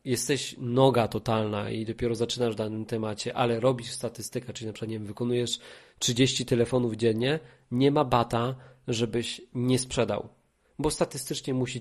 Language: Polish